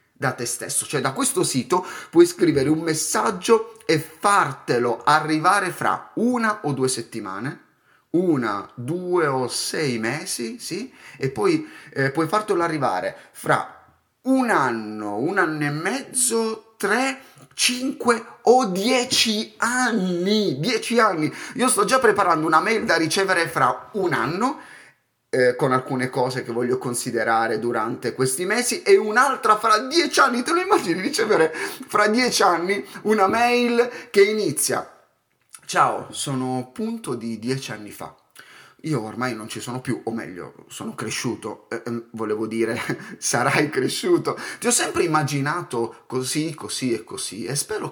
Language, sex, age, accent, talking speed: Italian, male, 30-49, native, 145 wpm